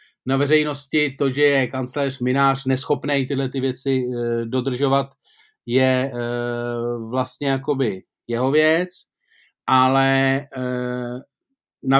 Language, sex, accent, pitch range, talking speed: Czech, male, native, 130-160 Hz, 95 wpm